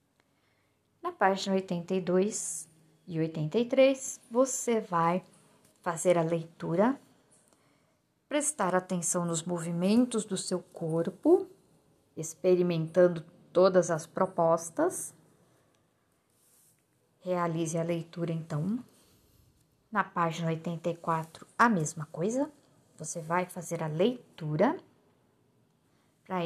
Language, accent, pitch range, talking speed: Portuguese, Brazilian, 165-210 Hz, 85 wpm